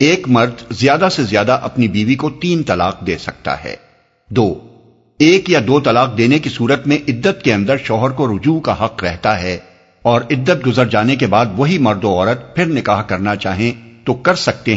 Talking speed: 200 wpm